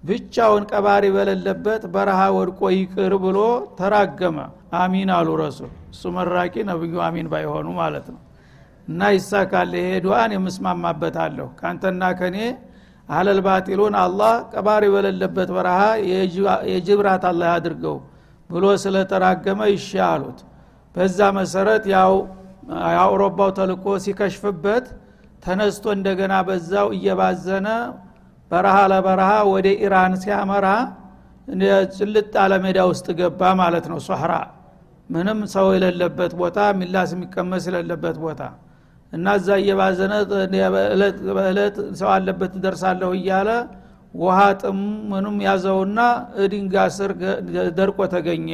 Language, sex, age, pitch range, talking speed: Amharic, male, 60-79, 180-200 Hz, 75 wpm